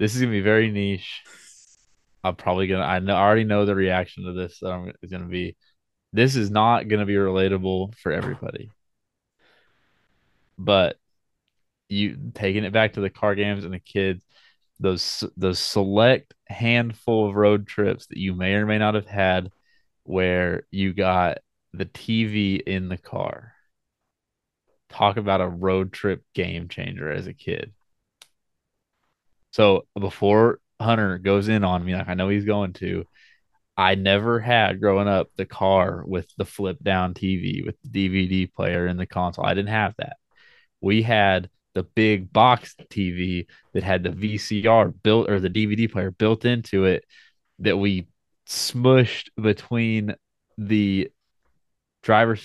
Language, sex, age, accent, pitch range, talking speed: English, male, 20-39, American, 95-110 Hz, 155 wpm